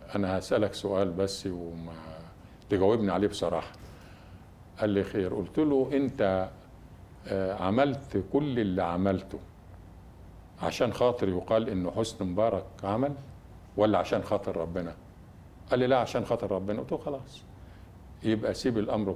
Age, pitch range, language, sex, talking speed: 50-69, 95-120 Hz, Arabic, male, 130 wpm